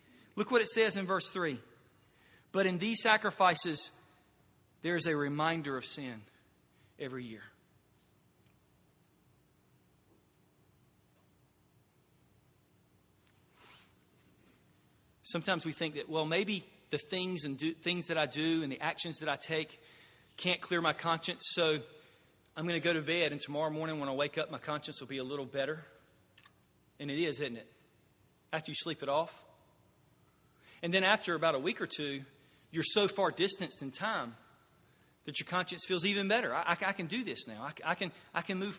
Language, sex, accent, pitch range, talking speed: English, male, American, 140-175 Hz, 160 wpm